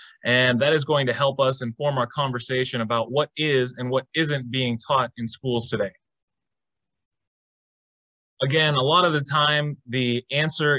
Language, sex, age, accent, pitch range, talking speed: English, male, 30-49, American, 120-140 Hz, 160 wpm